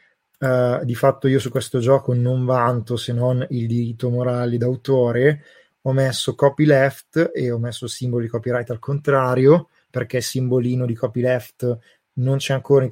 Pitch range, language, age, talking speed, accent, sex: 120-135 Hz, Italian, 20-39, 160 wpm, native, male